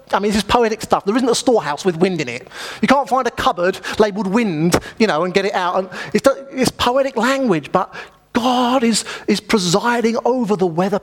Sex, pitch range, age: male, 185-240 Hz, 30-49